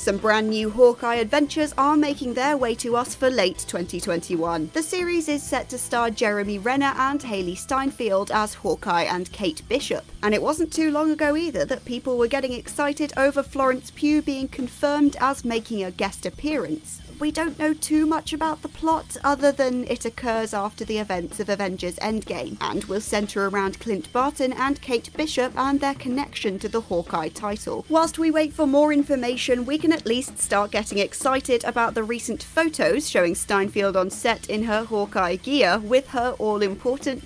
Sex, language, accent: female, English, British